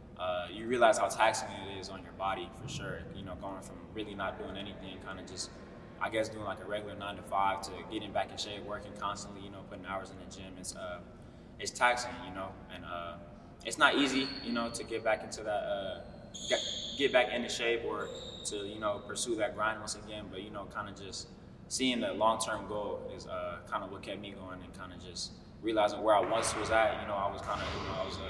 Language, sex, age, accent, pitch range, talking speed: English, male, 20-39, American, 95-110 Hz, 255 wpm